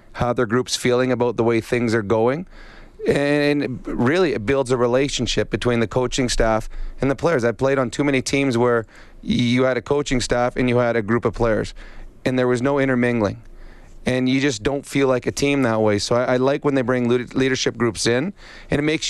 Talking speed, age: 220 wpm, 30-49